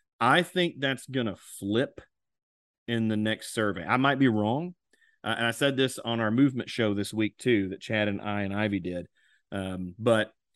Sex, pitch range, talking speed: male, 100-120 Hz, 200 wpm